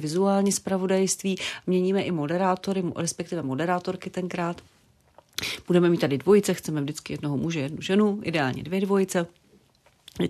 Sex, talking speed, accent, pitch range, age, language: female, 130 wpm, native, 155-185 Hz, 40-59, Czech